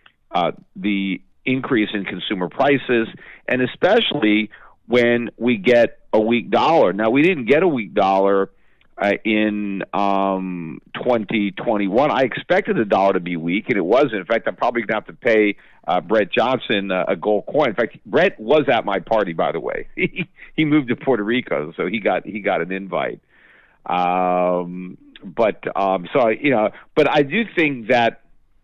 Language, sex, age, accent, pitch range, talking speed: English, male, 50-69, American, 95-125 Hz, 175 wpm